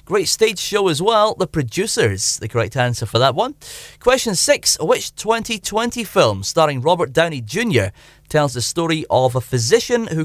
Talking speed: 170 wpm